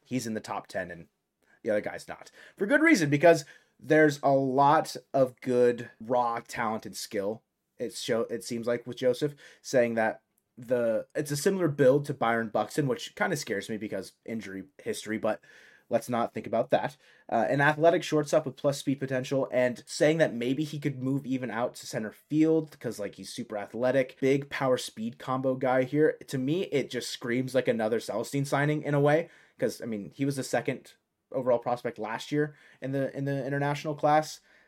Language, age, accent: English, 30-49, American